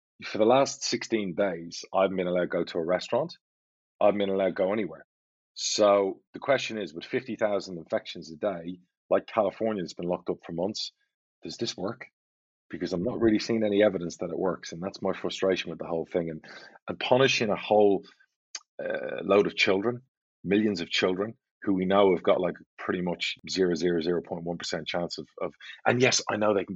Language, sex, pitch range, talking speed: English, male, 90-110 Hz, 195 wpm